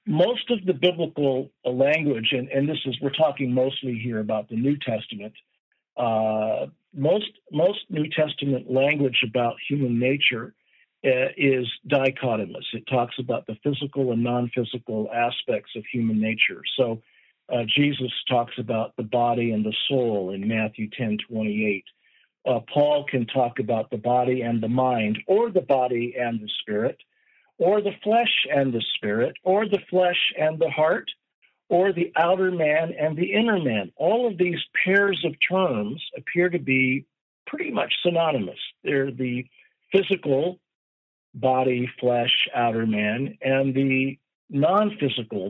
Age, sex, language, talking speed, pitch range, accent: 50-69, male, English, 150 wpm, 120-155 Hz, American